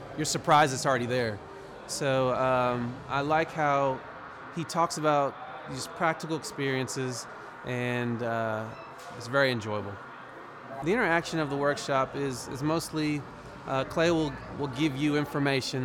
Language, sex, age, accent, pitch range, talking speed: English, male, 30-49, American, 120-145 Hz, 135 wpm